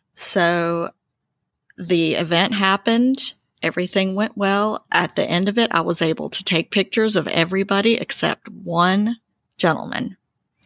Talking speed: 130 wpm